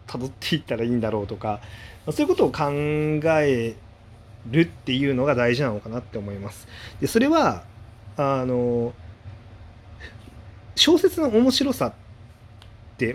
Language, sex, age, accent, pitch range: Japanese, male, 30-49, native, 110-155 Hz